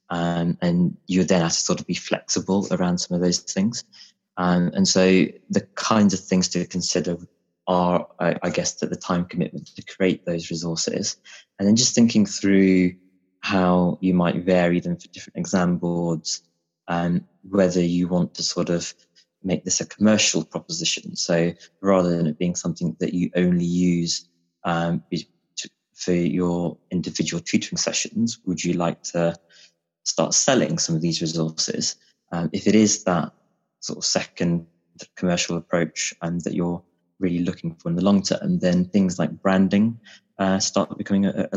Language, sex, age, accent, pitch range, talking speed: English, male, 20-39, British, 85-95 Hz, 170 wpm